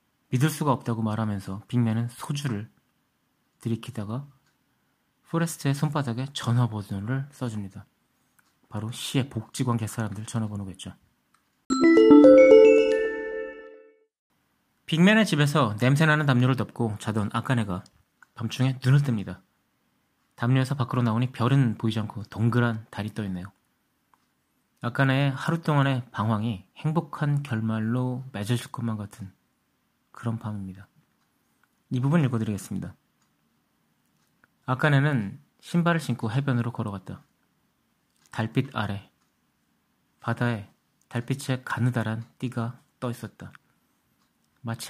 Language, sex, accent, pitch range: Korean, male, native, 110-140 Hz